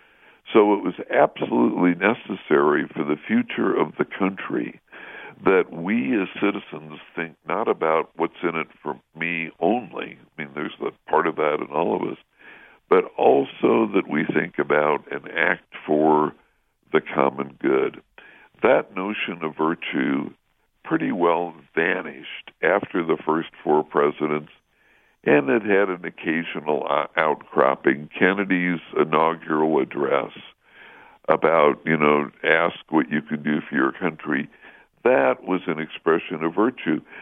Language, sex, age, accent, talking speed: English, female, 60-79, American, 135 wpm